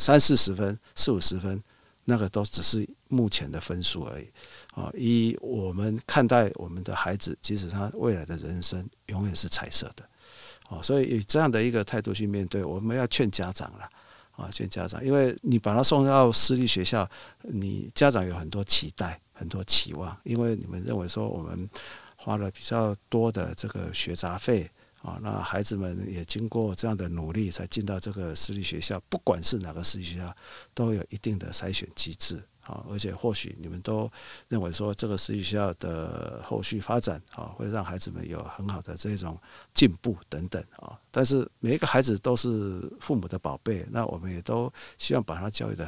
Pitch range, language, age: 90-115 Hz, Chinese, 50-69